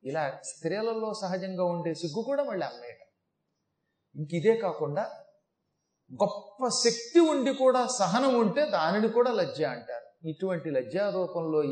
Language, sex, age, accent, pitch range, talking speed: Telugu, male, 30-49, native, 155-200 Hz, 120 wpm